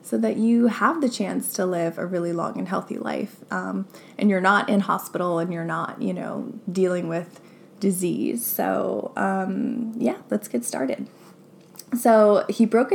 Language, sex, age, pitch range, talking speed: English, female, 20-39, 190-230 Hz, 170 wpm